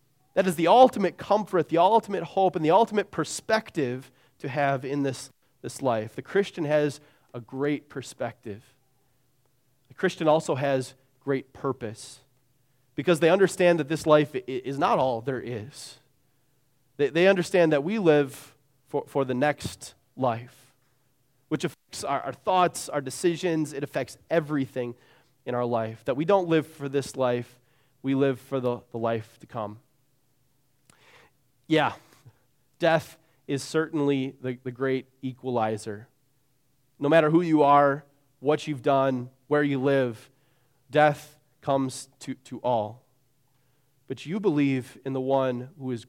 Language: English